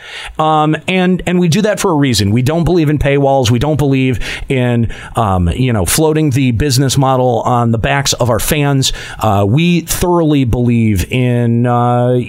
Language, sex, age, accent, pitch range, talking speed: English, male, 40-59, American, 130-165 Hz, 180 wpm